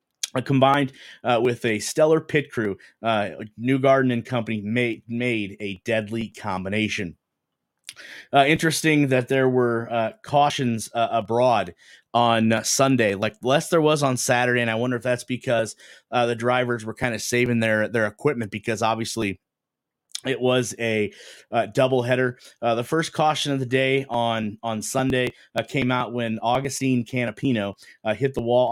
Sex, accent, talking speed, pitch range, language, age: male, American, 165 wpm, 110-135 Hz, English, 30-49